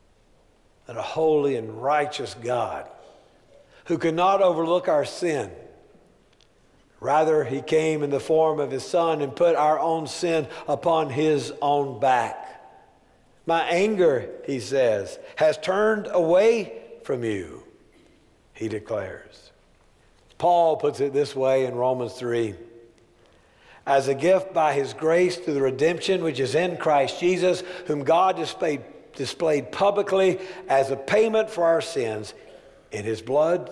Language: English